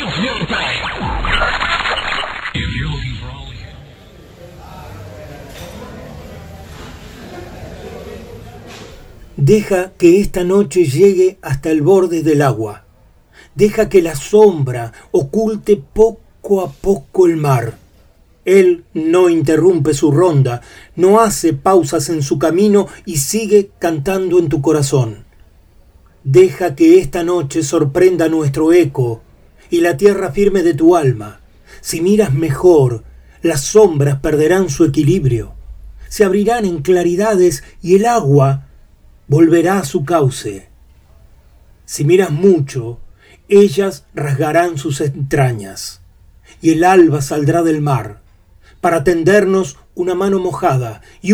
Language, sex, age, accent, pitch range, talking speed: Spanish, male, 40-59, Argentinian, 120-185 Hz, 105 wpm